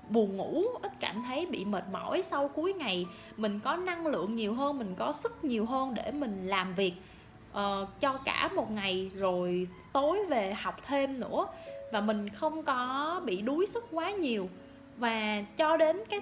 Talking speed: 180 wpm